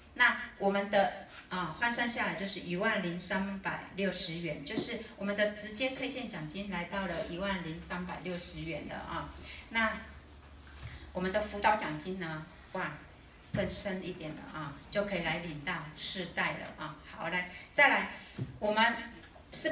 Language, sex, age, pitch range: Chinese, female, 30-49, 170-220 Hz